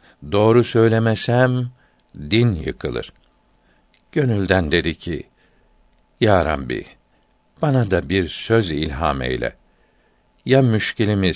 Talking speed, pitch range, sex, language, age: 90 wpm, 90-115 Hz, male, Turkish, 60-79